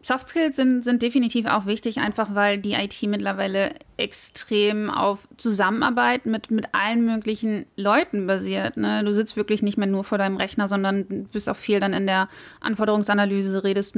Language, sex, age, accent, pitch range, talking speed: German, female, 20-39, German, 210-250 Hz, 170 wpm